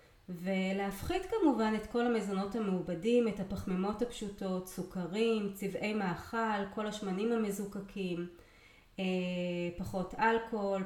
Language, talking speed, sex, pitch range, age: Hebrew, 95 wpm, female, 175-220 Hz, 30-49